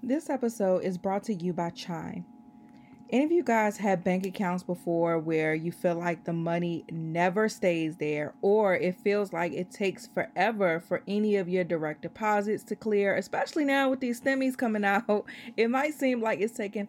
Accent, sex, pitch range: American, female, 180-240 Hz